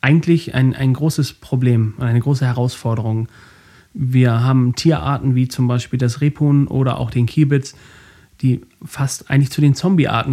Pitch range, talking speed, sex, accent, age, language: 125-150 Hz, 155 wpm, male, German, 30-49, German